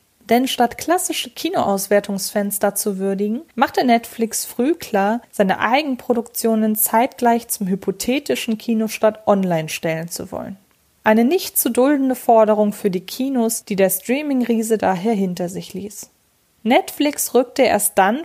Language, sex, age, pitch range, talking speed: German, female, 20-39, 205-250 Hz, 130 wpm